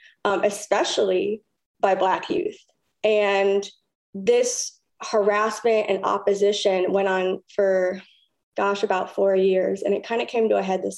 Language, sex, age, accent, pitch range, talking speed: English, female, 20-39, American, 195-215 Hz, 140 wpm